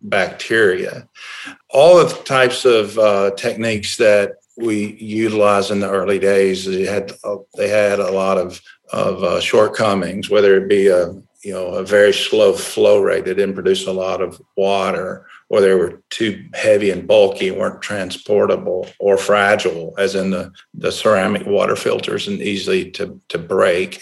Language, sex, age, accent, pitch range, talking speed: English, male, 50-69, American, 100-125 Hz, 170 wpm